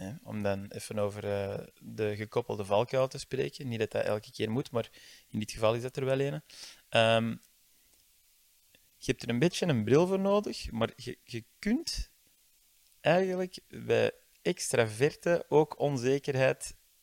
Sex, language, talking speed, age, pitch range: male, Dutch, 150 wpm, 20-39, 110-135 Hz